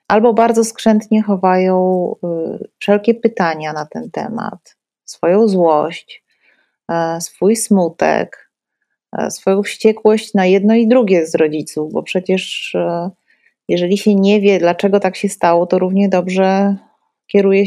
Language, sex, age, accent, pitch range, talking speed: Polish, female, 30-49, native, 185-220 Hz, 130 wpm